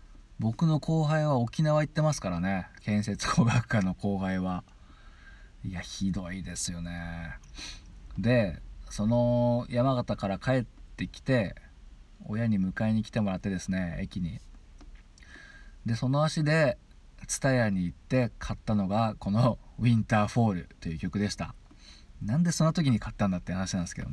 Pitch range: 85-120 Hz